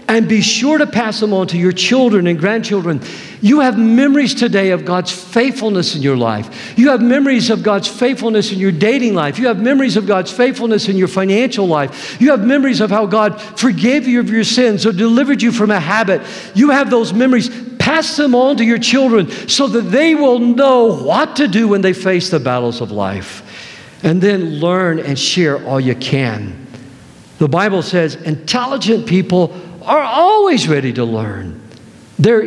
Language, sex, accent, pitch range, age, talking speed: English, male, American, 145-235 Hz, 50-69, 190 wpm